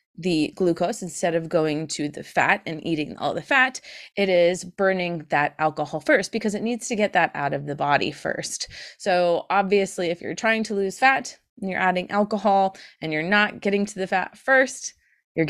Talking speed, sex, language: 195 wpm, female, English